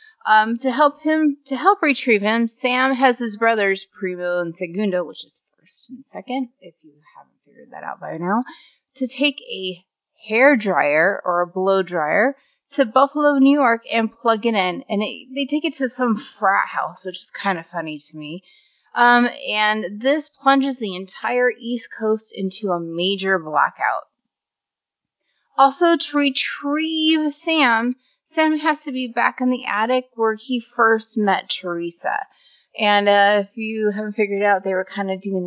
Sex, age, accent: female, 30-49, American